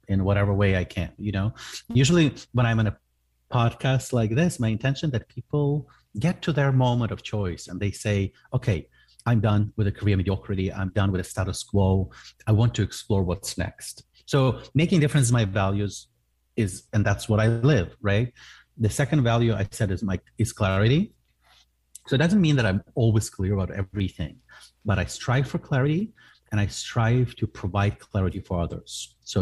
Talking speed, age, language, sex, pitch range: 190 wpm, 30-49, English, male, 95-125 Hz